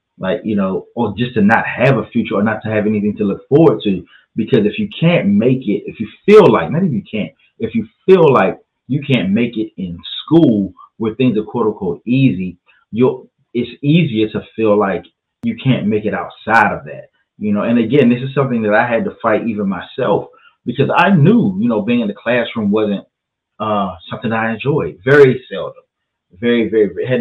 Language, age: English, 30-49